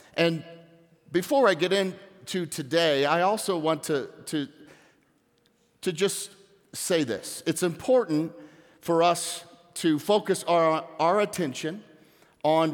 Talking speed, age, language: 120 wpm, 50-69, English